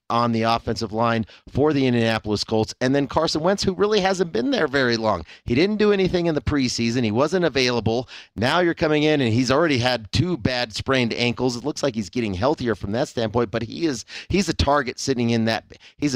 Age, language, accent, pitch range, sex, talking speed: 40-59, English, American, 105-125 Hz, male, 225 wpm